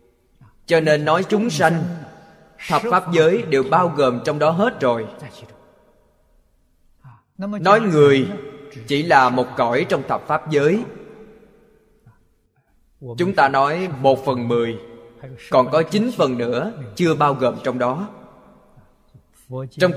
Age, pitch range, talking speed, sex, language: 20-39, 120-190 Hz, 125 wpm, male, Vietnamese